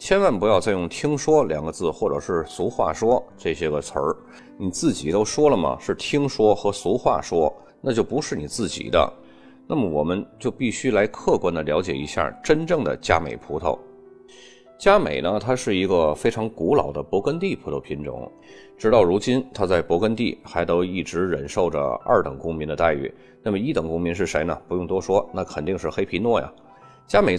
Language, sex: Chinese, male